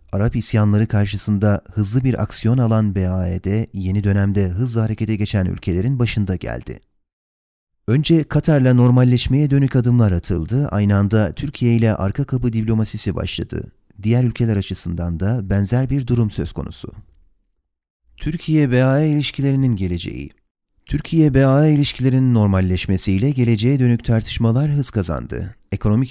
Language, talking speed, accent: Turkish, 115 wpm, native